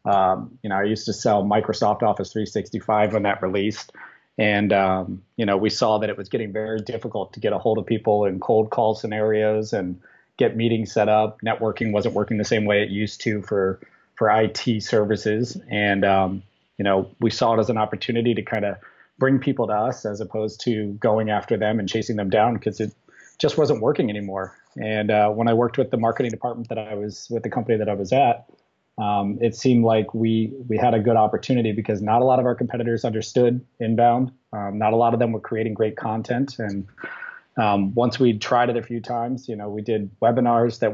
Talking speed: 220 wpm